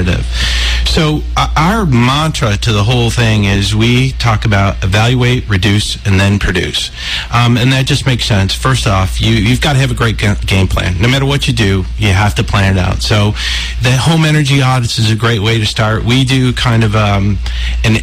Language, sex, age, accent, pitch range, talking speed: English, male, 40-59, American, 100-125 Hz, 200 wpm